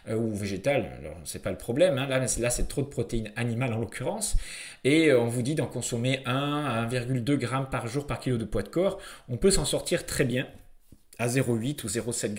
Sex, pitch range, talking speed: male, 120-150 Hz, 220 wpm